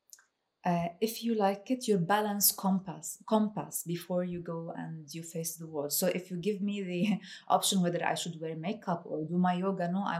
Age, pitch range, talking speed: 30-49, 175-210 Hz, 205 wpm